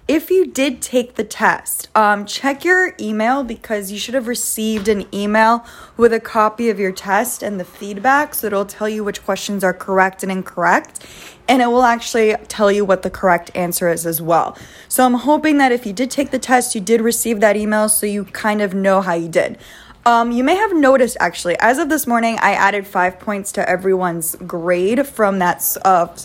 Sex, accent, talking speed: female, American, 210 wpm